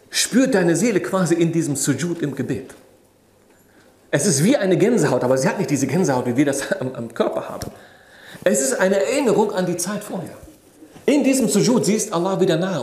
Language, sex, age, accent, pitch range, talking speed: German, male, 40-59, German, 135-190 Hz, 200 wpm